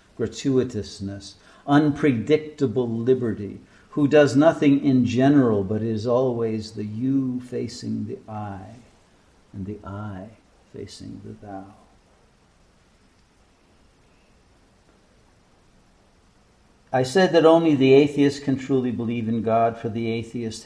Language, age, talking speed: English, 60-79, 105 wpm